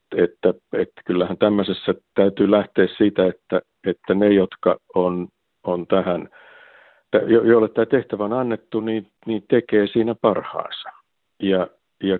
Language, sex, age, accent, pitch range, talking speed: Finnish, male, 50-69, native, 95-115 Hz, 135 wpm